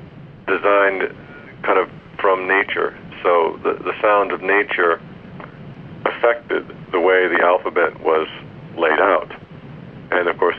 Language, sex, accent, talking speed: English, male, American, 125 wpm